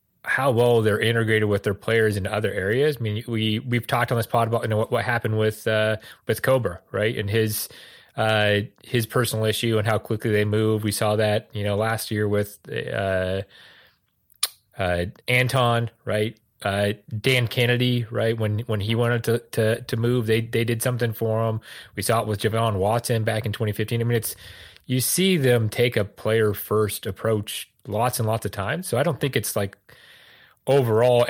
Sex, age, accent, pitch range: male, 30-49, American, 100-115 Hz